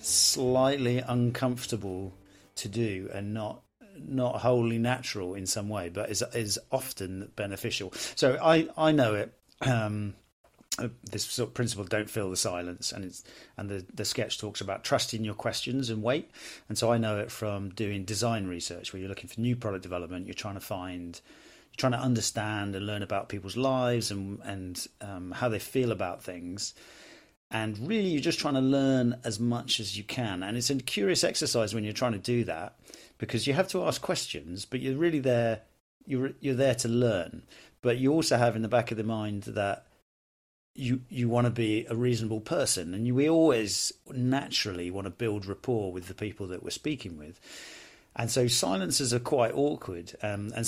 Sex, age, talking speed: male, 40-59, 190 wpm